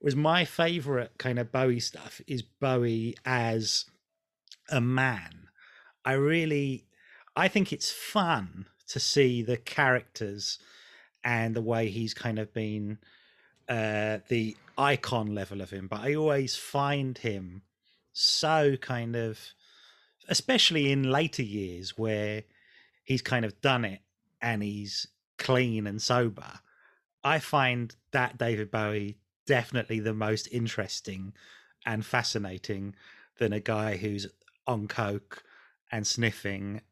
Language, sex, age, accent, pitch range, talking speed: English, male, 30-49, British, 105-130 Hz, 125 wpm